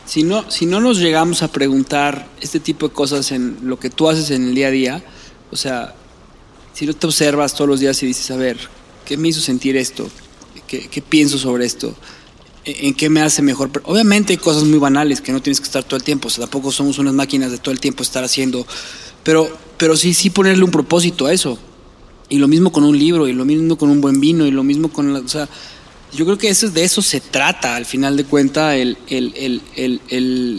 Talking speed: 245 wpm